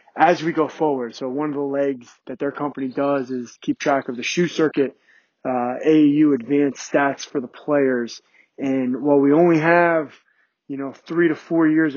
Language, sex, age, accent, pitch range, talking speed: English, male, 20-39, American, 135-160 Hz, 190 wpm